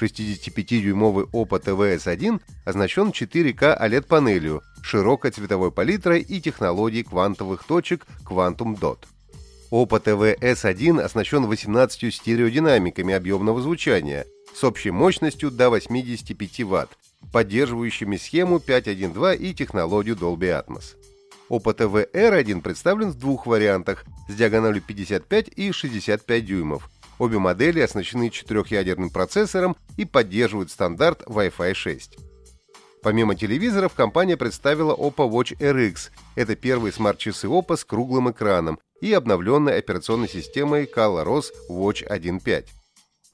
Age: 30-49